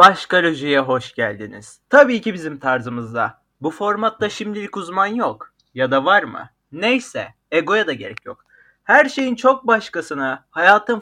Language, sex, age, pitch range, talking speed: Turkish, male, 30-49, 150-215 Hz, 140 wpm